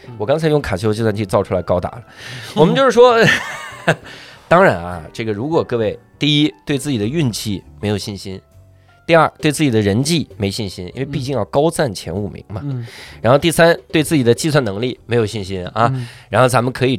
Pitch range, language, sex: 100-150 Hz, Chinese, male